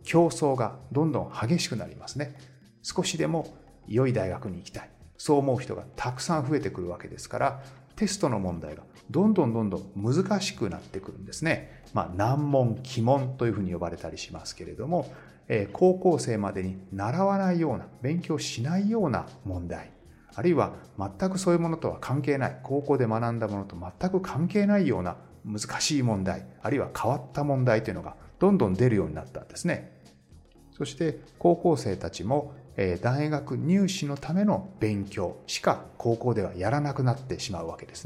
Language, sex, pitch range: Japanese, male, 100-160 Hz